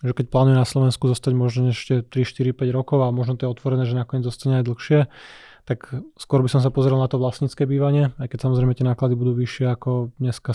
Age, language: 20-39, Slovak